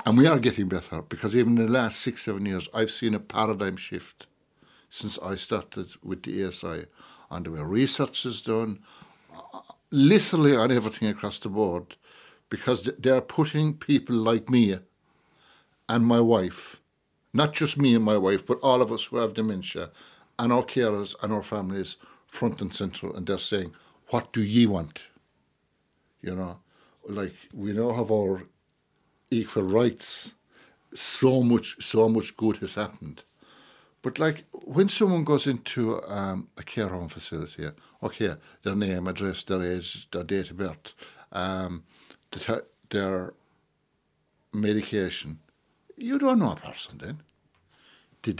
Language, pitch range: English, 95-125 Hz